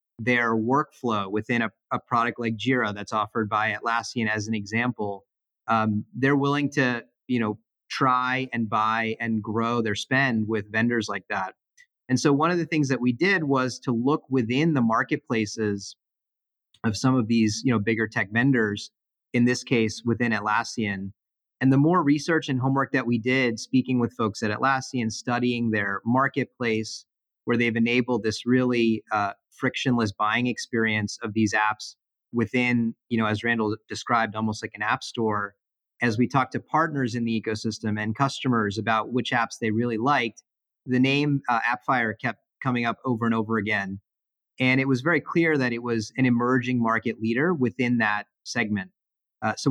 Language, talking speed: English, 175 wpm